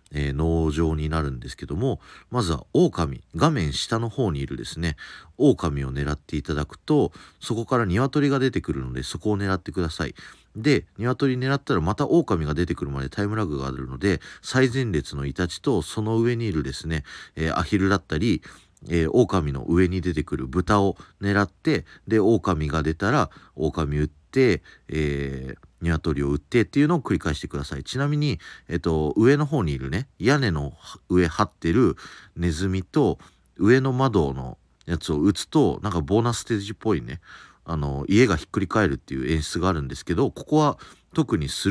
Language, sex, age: Japanese, male, 40-59